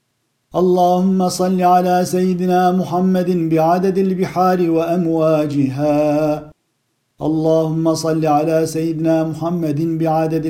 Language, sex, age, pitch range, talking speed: Turkish, male, 50-69, 155-185 Hz, 80 wpm